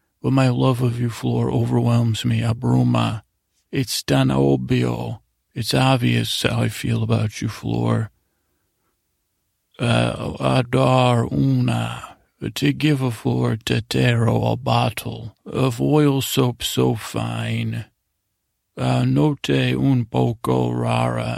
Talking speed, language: 110 wpm, English